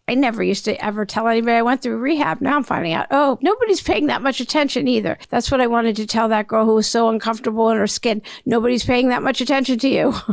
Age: 50-69